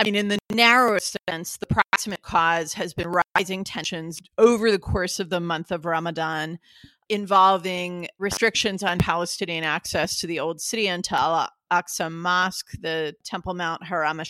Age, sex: 40-59, female